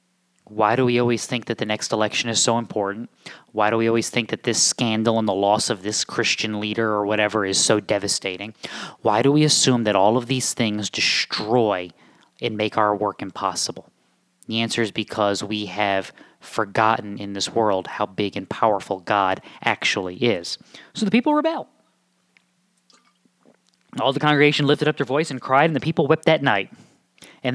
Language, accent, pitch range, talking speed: English, American, 105-135 Hz, 185 wpm